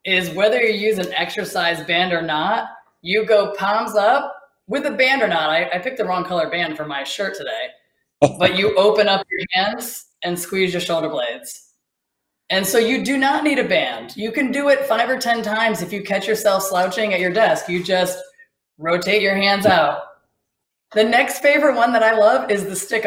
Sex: female